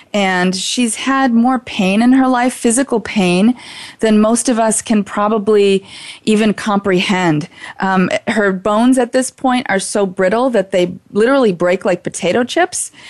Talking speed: 155 wpm